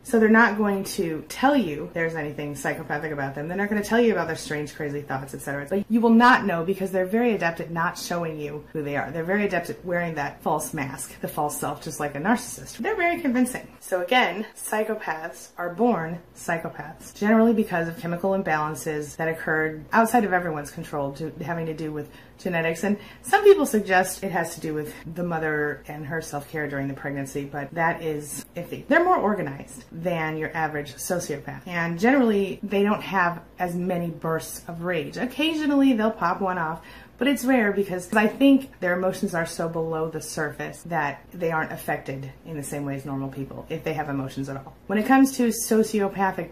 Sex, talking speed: female, 205 wpm